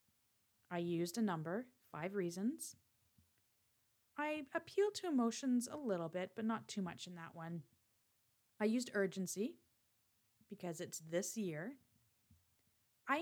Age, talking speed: 30-49, 125 wpm